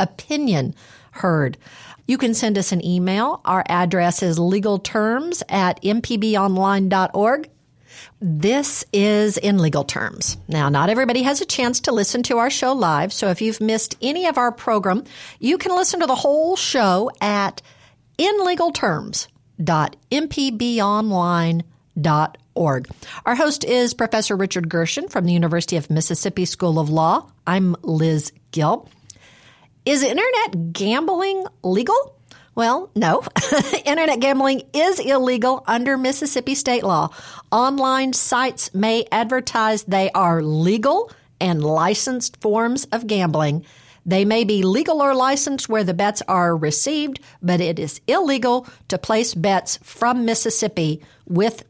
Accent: American